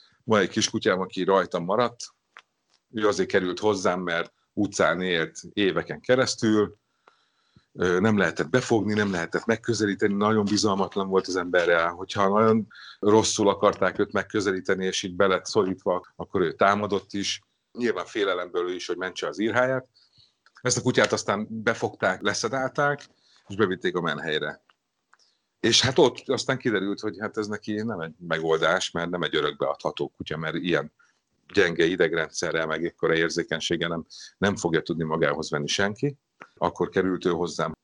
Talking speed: 150 wpm